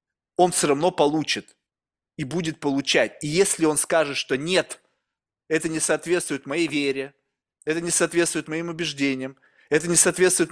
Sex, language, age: male, Russian, 30-49